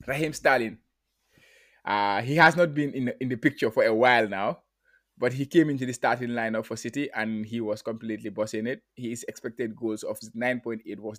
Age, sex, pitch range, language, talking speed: 20-39, male, 115-140 Hz, English, 195 wpm